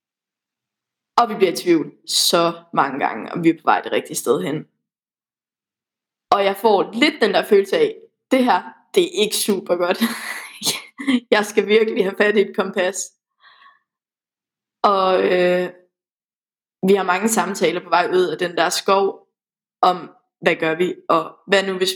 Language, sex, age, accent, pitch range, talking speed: Danish, female, 20-39, native, 190-245 Hz, 165 wpm